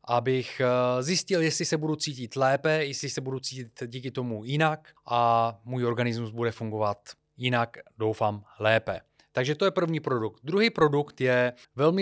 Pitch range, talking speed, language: 115-145 Hz, 155 wpm, Czech